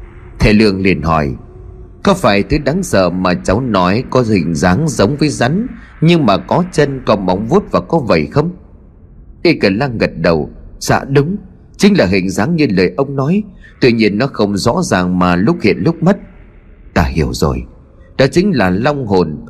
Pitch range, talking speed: 90-150 Hz, 195 wpm